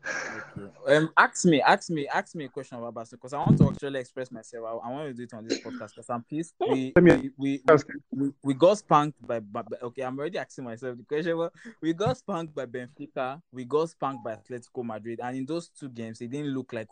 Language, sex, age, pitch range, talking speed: English, male, 20-39, 120-155 Hz, 240 wpm